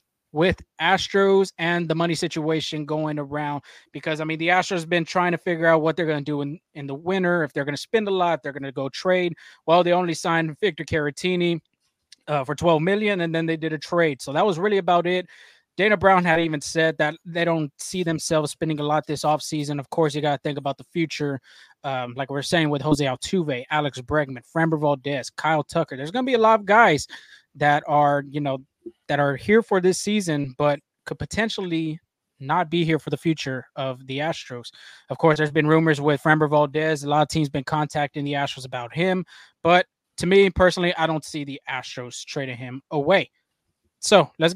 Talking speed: 220 wpm